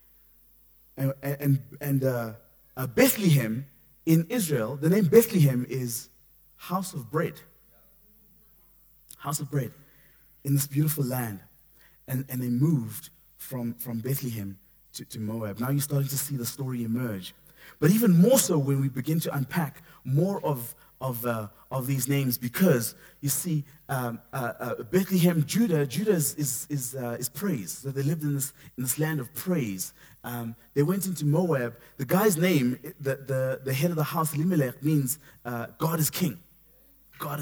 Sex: male